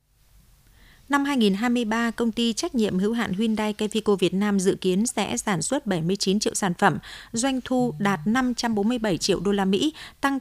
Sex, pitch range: female, 190-235 Hz